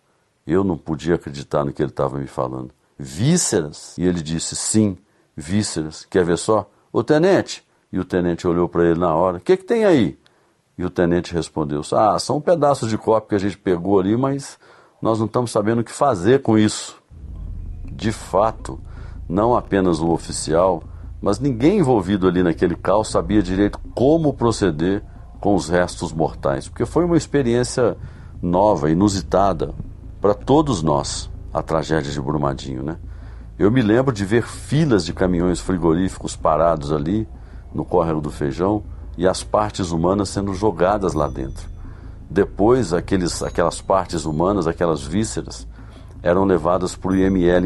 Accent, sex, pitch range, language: Brazilian, male, 85-105 Hz, Portuguese